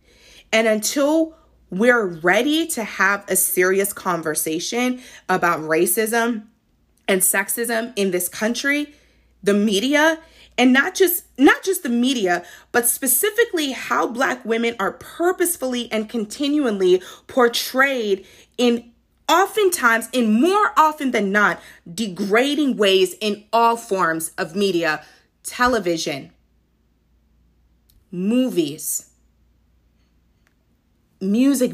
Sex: female